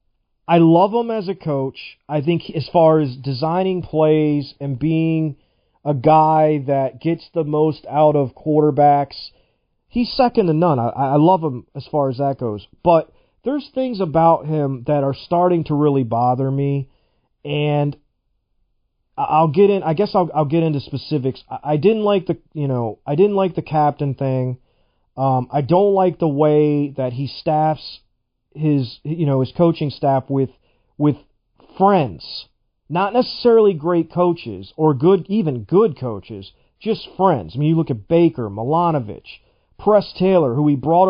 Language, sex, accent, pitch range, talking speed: English, male, American, 140-170 Hz, 165 wpm